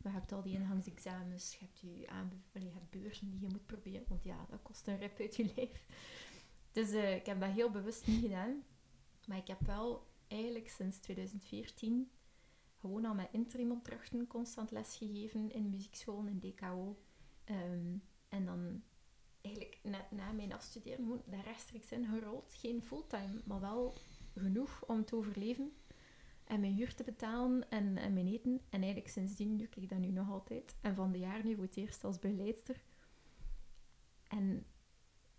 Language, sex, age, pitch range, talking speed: Dutch, female, 20-39, 195-230 Hz, 170 wpm